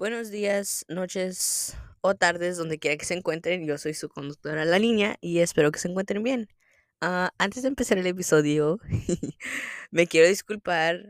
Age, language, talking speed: 10-29, Spanish, 170 wpm